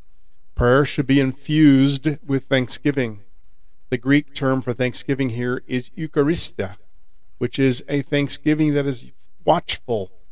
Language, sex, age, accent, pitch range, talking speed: English, male, 50-69, American, 105-140 Hz, 120 wpm